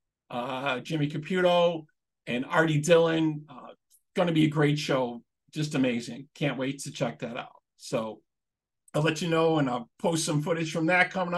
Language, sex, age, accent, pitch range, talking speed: English, male, 50-69, American, 140-175 Hz, 175 wpm